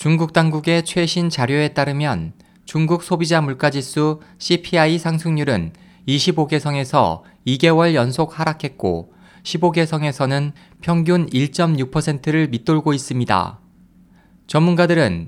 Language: Korean